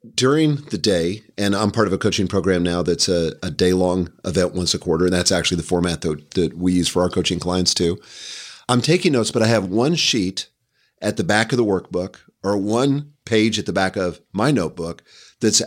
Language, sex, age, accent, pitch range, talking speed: English, male, 40-59, American, 90-110 Hz, 220 wpm